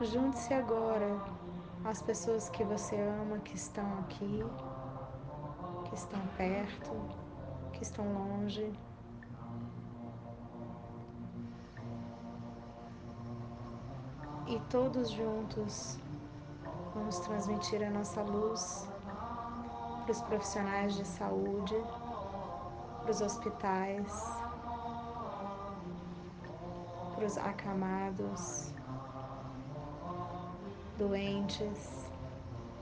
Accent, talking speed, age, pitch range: Brazilian, 65 wpm, 20-39, 130-205 Hz